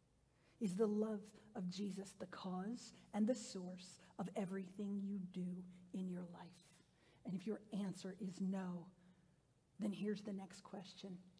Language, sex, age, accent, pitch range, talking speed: English, female, 40-59, American, 190-245 Hz, 145 wpm